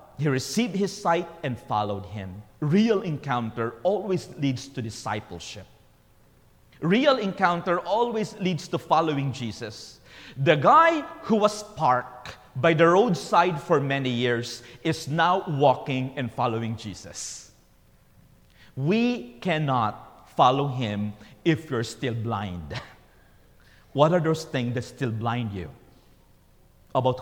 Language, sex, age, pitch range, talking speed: English, male, 40-59, 110-160 Hz, 120 wpm